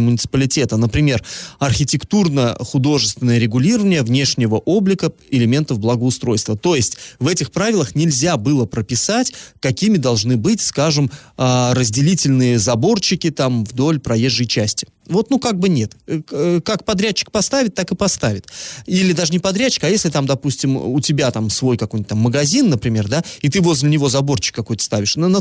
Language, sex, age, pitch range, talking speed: Russian, male, 20-39, 125-175 Hz, 145 wpm